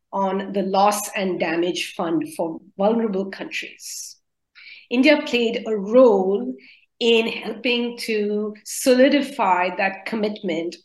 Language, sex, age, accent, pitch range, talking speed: English, female, 50-69, Indian, 200-265 Hz, 105 wpm